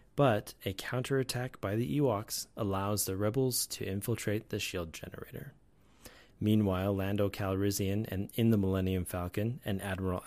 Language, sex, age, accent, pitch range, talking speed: English, male, 30-49, American, 95-115 Hz, 140 wpm